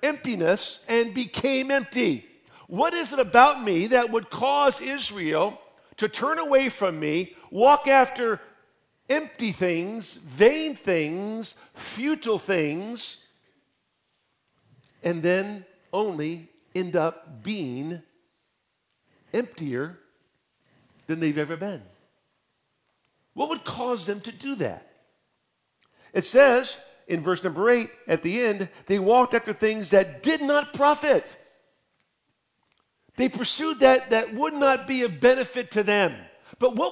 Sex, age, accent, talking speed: male, 50-69, American, 120 wpm